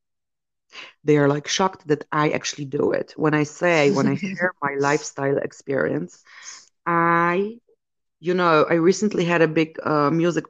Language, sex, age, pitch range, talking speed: English, female, 30-49, 150-175 Hz, 160 wpm